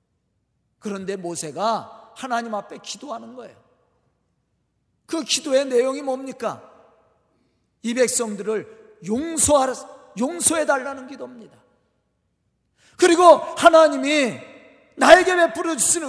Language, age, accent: Korean, 40-59, native